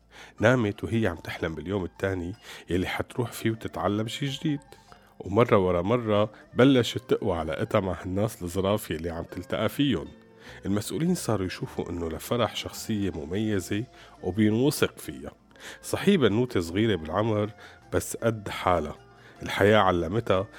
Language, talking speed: Arabic, 125 wpm